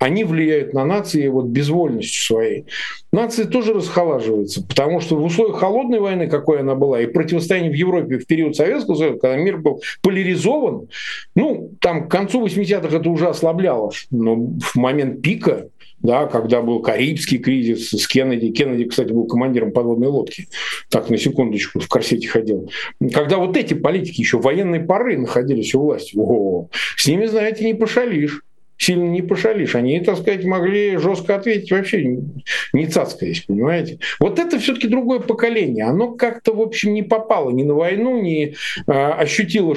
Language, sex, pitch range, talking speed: Russian, male, 145-215 Hz, 165 wpm